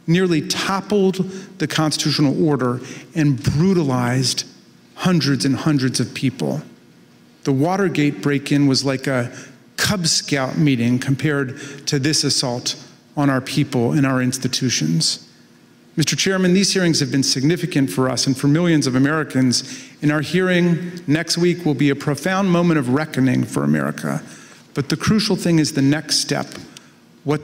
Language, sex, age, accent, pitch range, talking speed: English, male, 50-69, American, 130-170 Hz, 150 wpm